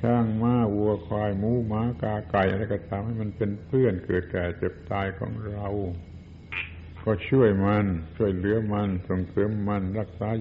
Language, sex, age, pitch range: Thai, male, 70-89, 95-115 Hz